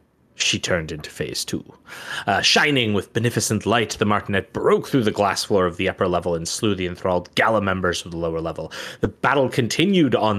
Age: 30-49